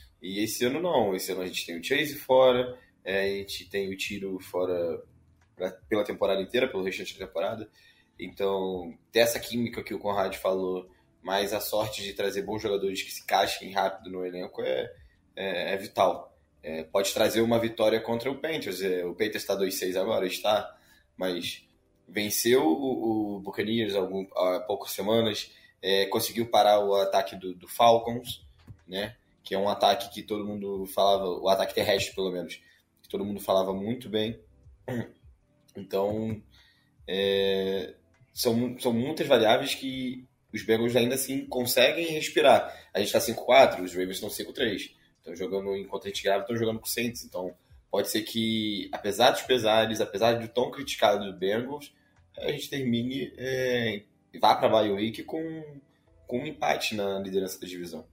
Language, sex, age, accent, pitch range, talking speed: Portuguese, male, 20-39, Brazilian, 95-120 Hz, 165 wpm